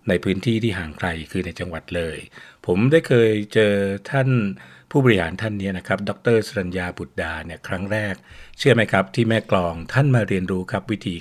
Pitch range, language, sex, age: 95-120 Hz, Thai, male, 60-79